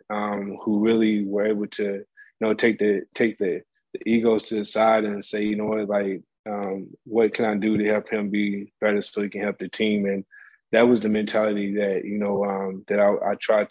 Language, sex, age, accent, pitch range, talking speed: English, male, 20-39, American, 100-110 Hz, 230 wpm